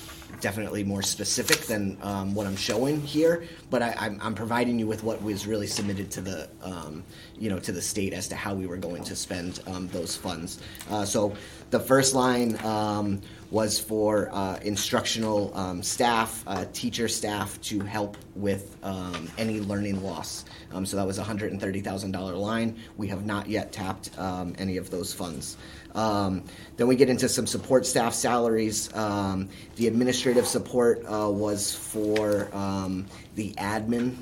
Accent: American